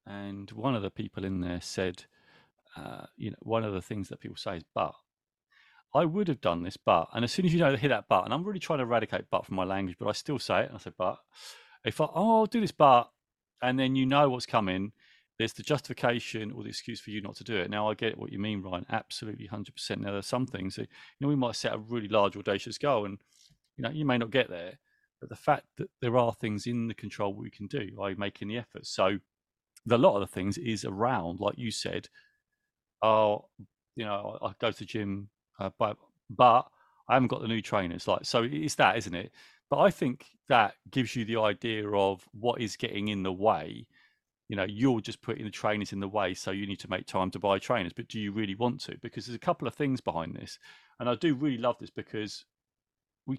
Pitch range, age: 100-130 Hz, 40-59